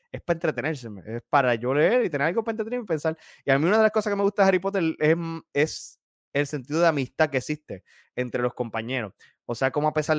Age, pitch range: 20-39, 115-150 Hz